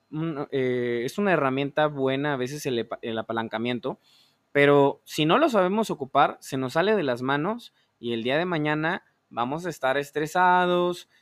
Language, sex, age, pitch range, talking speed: Spanish, male, 20-39, 130-165 Hz, 160 wpm